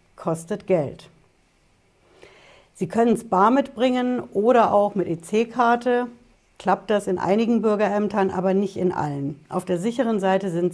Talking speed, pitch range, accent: 140 wpm, 165-205 Hz, German